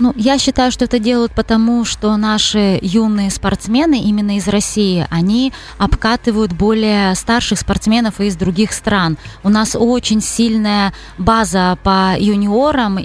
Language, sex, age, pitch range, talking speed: Russian, female, 20-39, 180-220 Hz, 135 wpm